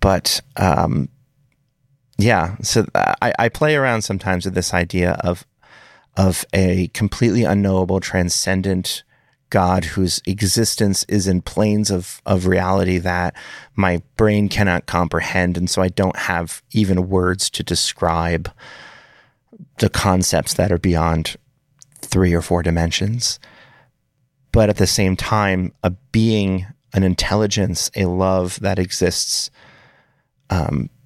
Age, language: 30-49, English